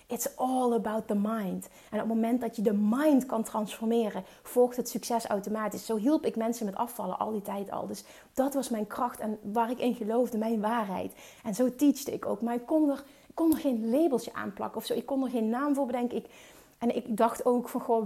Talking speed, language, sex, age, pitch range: 245 wpm, Dutch, female, 30-49, 210-245 Hz